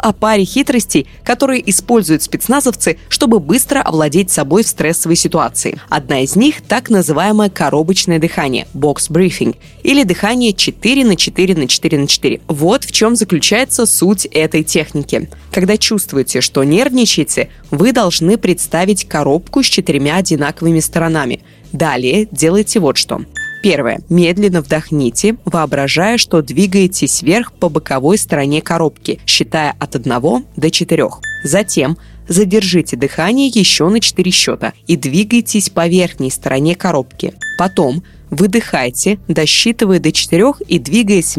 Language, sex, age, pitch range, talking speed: Russian, female, 20-39, 155-220 Hz, 130 wpm